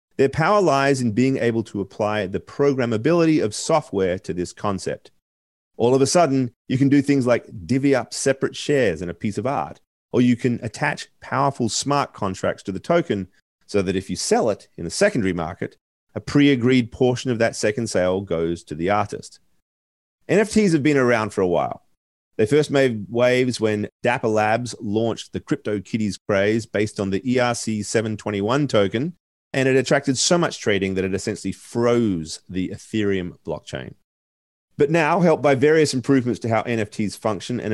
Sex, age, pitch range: male, 30-49, 100-140 Hz